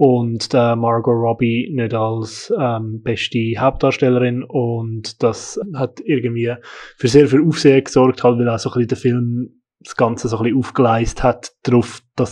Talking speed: 150 wpm